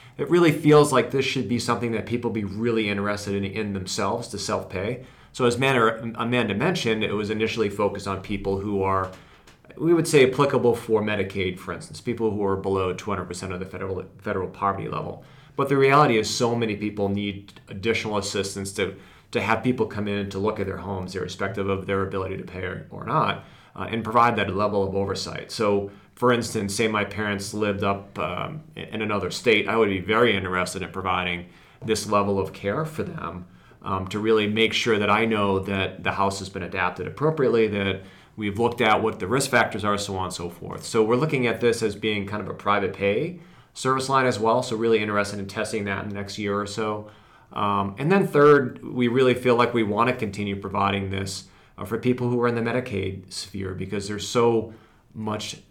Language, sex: English, male